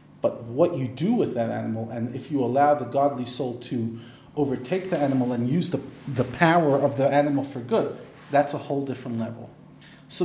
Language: English